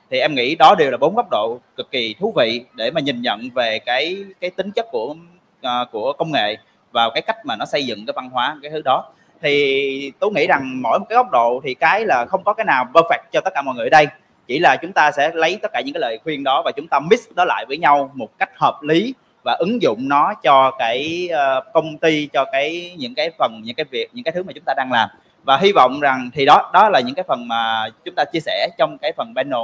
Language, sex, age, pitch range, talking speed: Vietnamese, male, 20-39, 130-180 Hz, 270 wpm